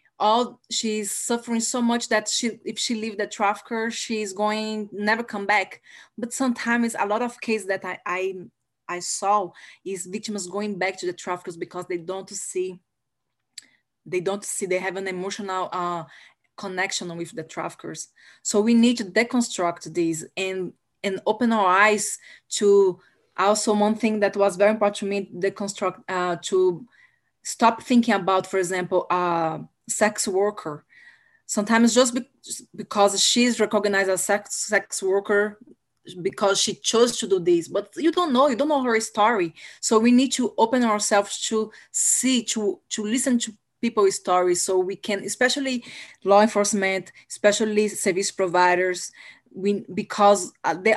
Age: 20-39